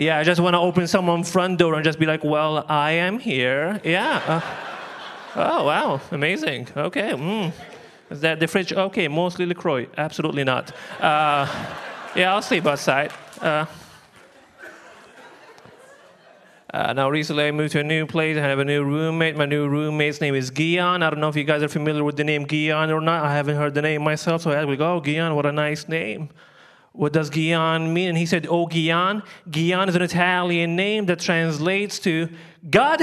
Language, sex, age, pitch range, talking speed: English, male, 20-39, 150-175 Hz, 195 wpm